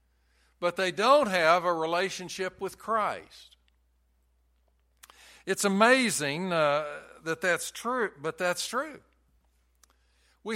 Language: English